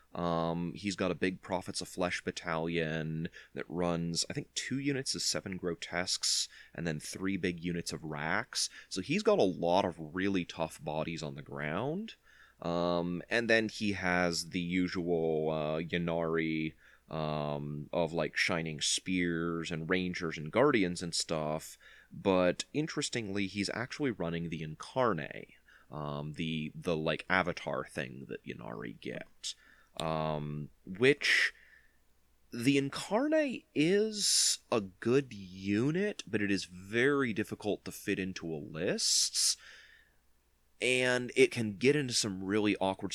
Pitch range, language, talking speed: 80-105 Hz, English, 140 wpm